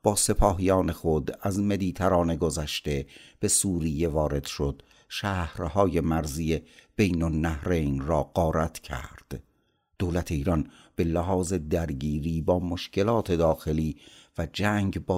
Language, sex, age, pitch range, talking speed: Persian, male, 60-79, 75-100 Hz, 115 wpm